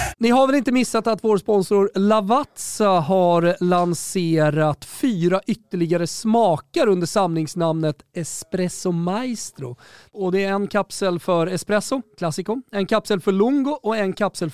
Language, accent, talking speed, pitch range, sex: Swedish, native, 135 wpm, 150-210 Hz, male